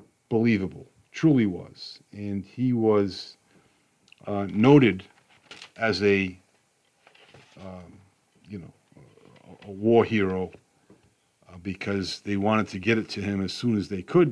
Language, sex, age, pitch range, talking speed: English, male, 50-69, 95-135 Hz, 130 wpm